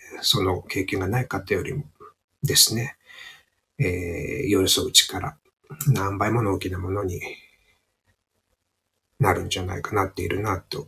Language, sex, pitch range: Japanese, male, 95-135 Hz